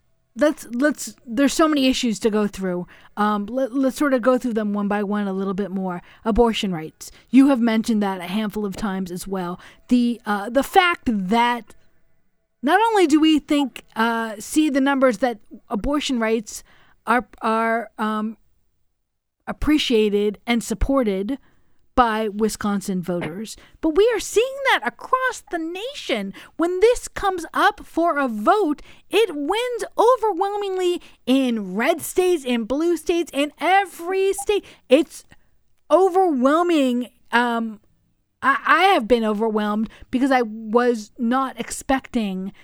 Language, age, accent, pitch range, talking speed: English, 40-59, American, 215-305 Hz, 145 wpm